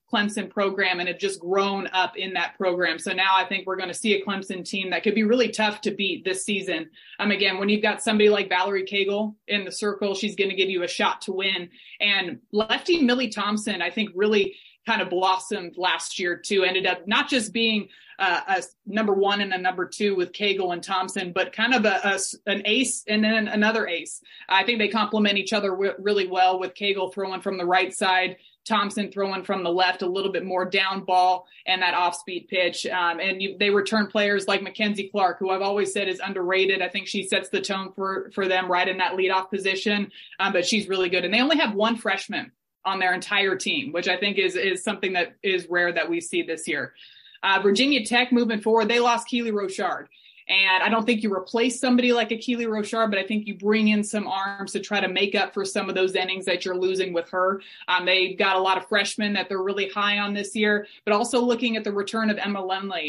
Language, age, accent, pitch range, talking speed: English, 20-39, American, 185-210 Hz, 230 wpm